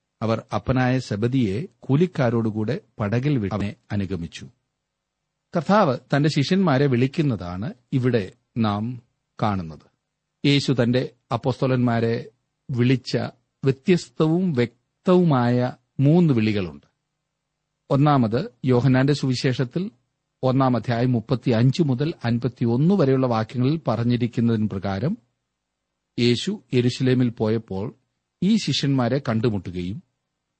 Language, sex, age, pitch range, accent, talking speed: Malayalam, male, 40-59, 115-155 Hz, native, 80 wpm